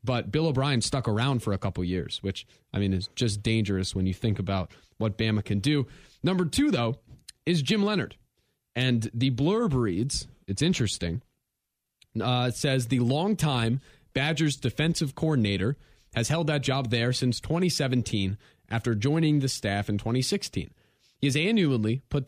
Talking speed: 160 wpm